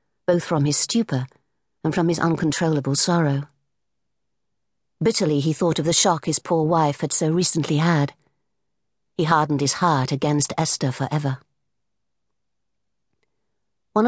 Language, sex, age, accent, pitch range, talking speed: English, female, 50-69, British, 140-180 Hz, 130 wpm